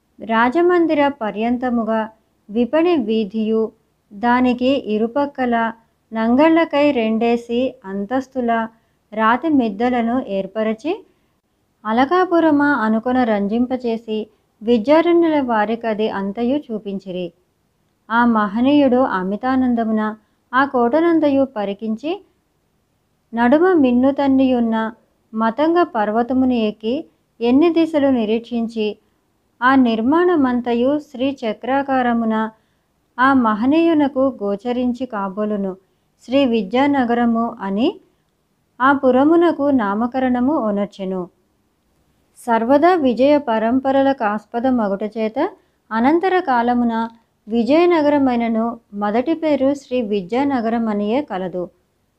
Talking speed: 70 wpm